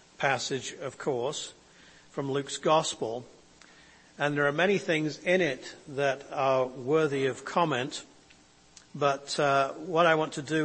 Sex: male